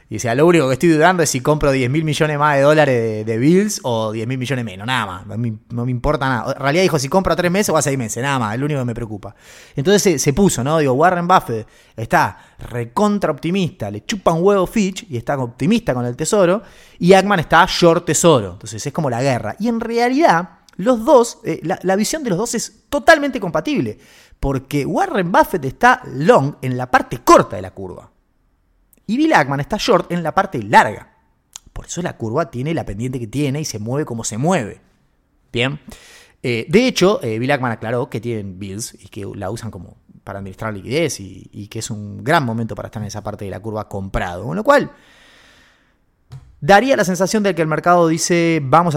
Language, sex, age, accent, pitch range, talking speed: Spanish, male, 30-49, Argentinian, 115-175 Hz, 225 wpm